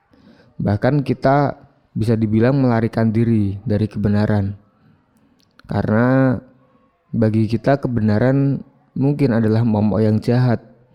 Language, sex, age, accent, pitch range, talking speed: Indonesian, male, 20-39, native, 105-125 Hz, 95 wpm